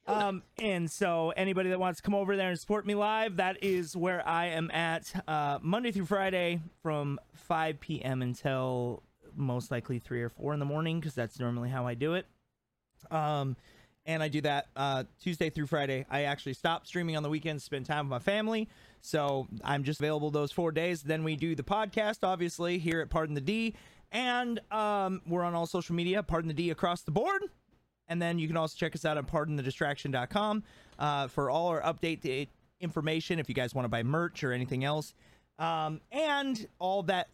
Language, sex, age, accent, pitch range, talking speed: English, male, 30-49, American, 140-190 Hz, 200 wpm